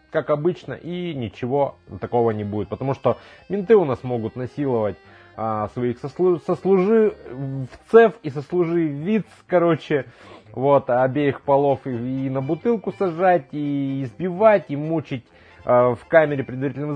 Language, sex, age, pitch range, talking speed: Russian, male, 20-39, 115-155 Hz, 130 wpm